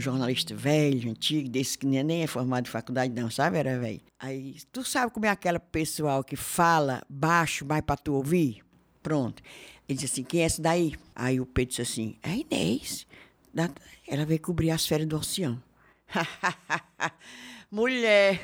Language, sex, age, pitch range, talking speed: Portuguese, female, 60-79, 150-235 Hz, 165 wpm